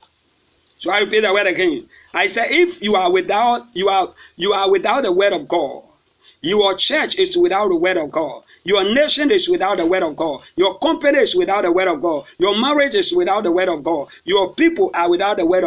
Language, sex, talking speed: English, male, 225 wpm